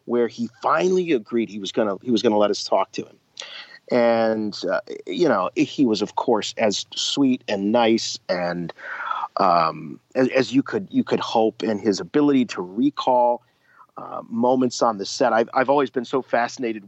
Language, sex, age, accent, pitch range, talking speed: English, male, 40-59, American, 110-140 Hz, 185 wpm